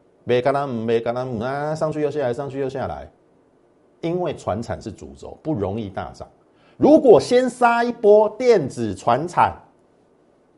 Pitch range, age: 95-155 Hz, 50-69